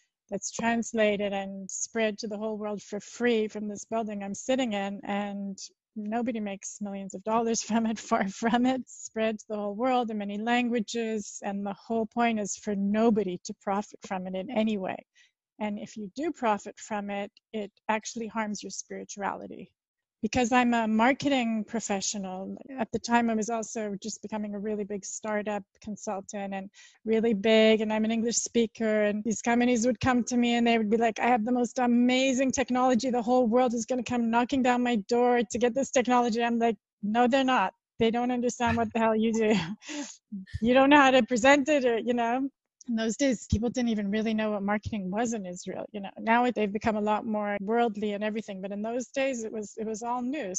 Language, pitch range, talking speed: English, 210-245 Hz, 210 wpm